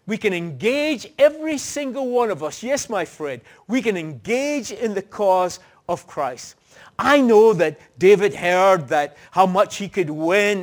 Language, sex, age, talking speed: English, male, 50-69, 170 wpm